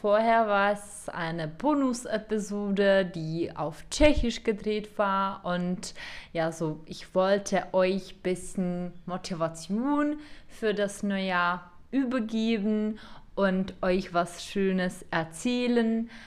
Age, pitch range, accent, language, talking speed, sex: 20-39, 180-215 Hz, German, Czech, 105 wpm, female